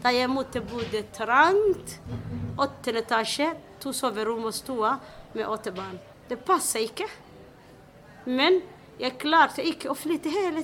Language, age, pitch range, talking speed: English, 30-49, 235-300 Hz, 130 wpm